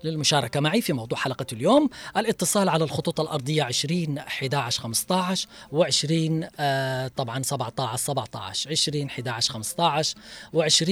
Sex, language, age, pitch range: female, Arabic, 20-39, 135-180 Hz